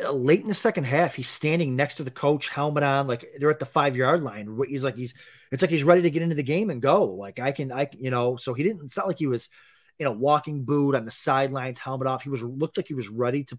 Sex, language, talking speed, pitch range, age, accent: male, English, 290 wpm, 120-150 Hz, 30-49, American